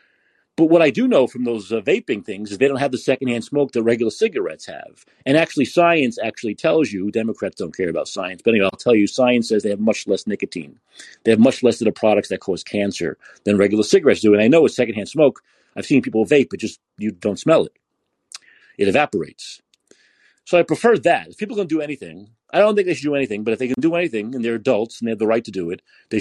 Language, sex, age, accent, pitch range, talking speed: English, male, 40-59, American, 115-155 Hz, 250 wpm